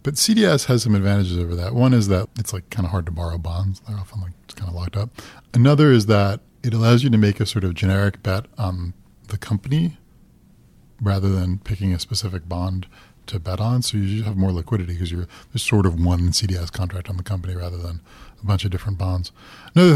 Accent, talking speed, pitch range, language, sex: American, 225 wpm, 95-115 Hz, English, male